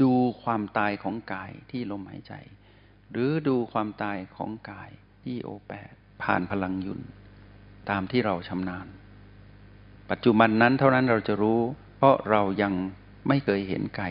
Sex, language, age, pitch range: male, Thai, 60-79, 100-120 Hz